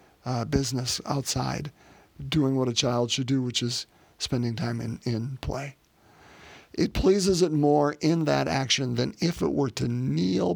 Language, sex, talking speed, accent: English, male, 165 wpm, American